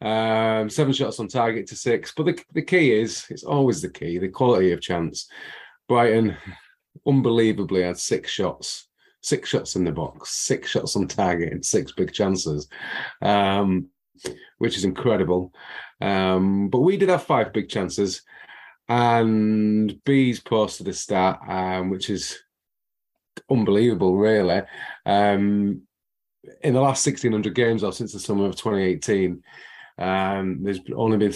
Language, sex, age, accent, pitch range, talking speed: English, male, 30-49, British, 95-125 Hz, 145 wpm